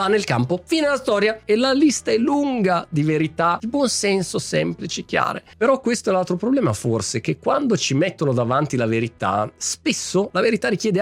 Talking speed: 185 wpm